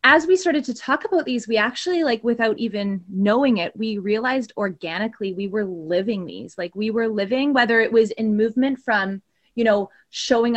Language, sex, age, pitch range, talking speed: English, female, 20-39, 190-225 Hz, 195 wpm